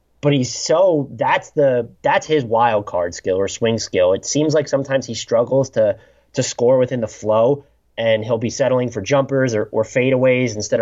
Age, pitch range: 20-39, 110-130 Hz